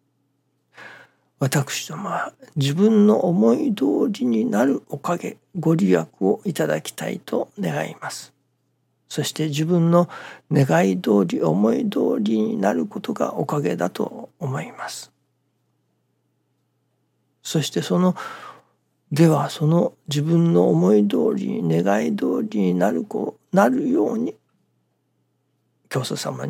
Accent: native